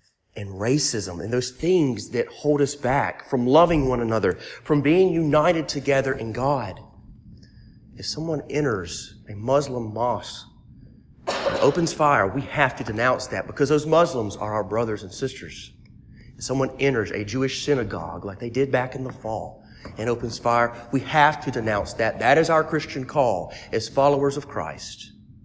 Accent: American